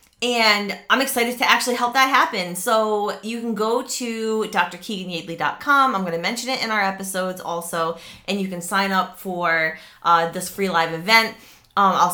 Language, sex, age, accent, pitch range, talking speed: English, female, 20-39, American, 165-215 Hz, 180 wpm